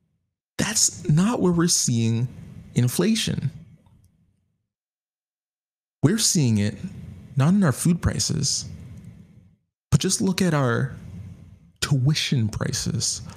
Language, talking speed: English, 95 wpm